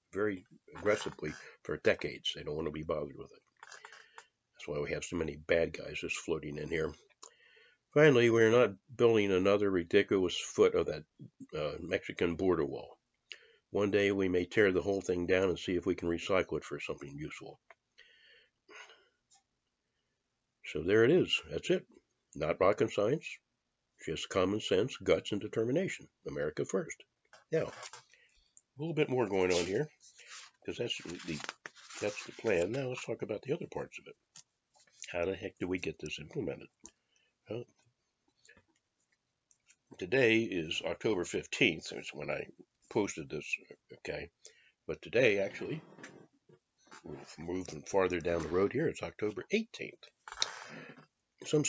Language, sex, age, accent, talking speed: English, male, 60-79, American, 150 wpm